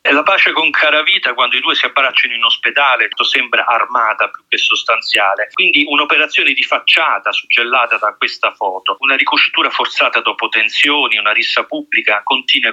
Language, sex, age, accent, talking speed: Italian, male, 40-59, native, 165 wpm